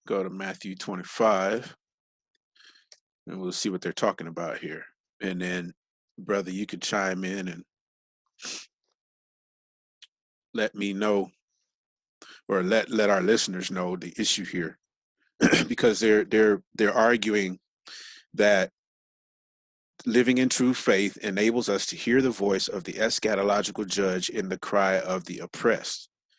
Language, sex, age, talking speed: English, male, 30-49, 130 wpm